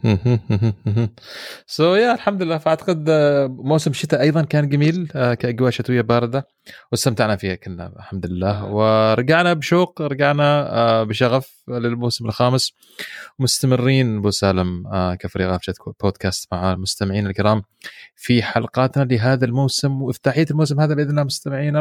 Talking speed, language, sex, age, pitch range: 120 wpm, Arabic, male, 30-49, 100-145 Hz